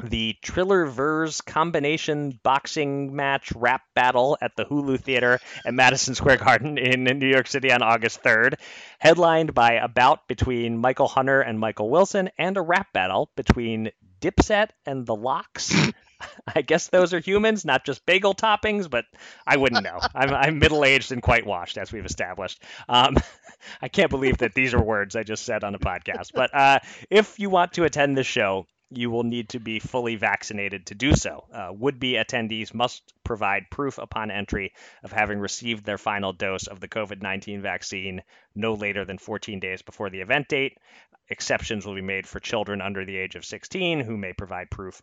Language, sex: English, male